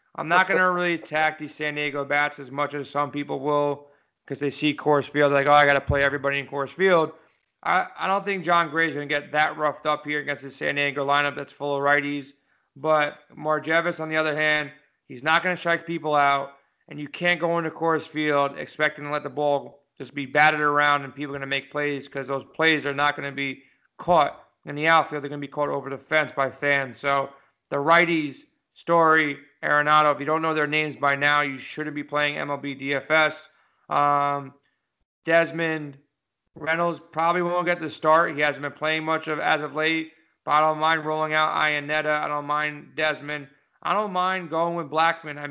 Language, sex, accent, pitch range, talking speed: English, male, American, 145-160 Hz, 220 wpm